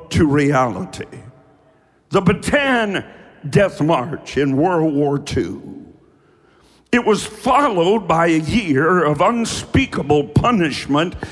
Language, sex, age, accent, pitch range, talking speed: English, male, 60-79, American, 145-205 Hz, 100 wpm